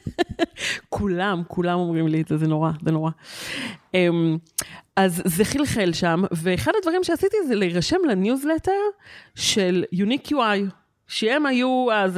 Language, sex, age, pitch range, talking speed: Hebrew, female, 30-49, 165-210 Hz, 135 wpm